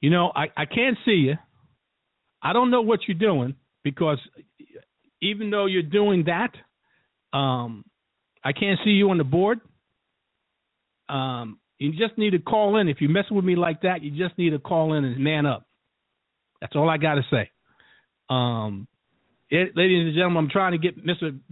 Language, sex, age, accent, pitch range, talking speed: English, male, 50-69, American, 145-190 Hz, 185 wpm